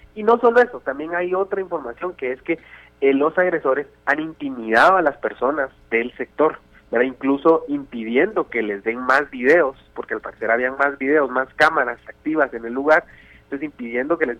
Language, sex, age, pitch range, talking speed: Spanish, male, 30-49, 120-180 Hz, 190 wpm